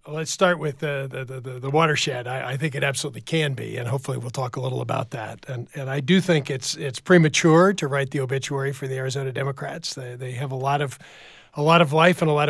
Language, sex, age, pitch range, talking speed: English, male, 40-59, 130-155 Hz, 250 wpm